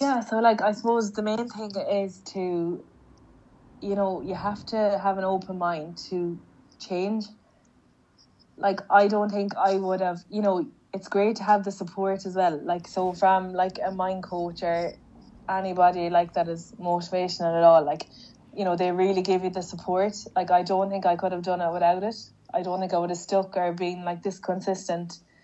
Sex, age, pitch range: female, 20-39, 175-200 Hz